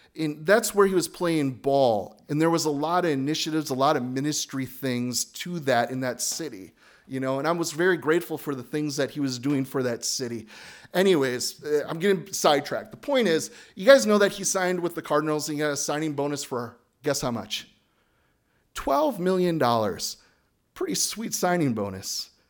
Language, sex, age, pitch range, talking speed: English, male, 30-49, 125-155 Hz, 195 wpm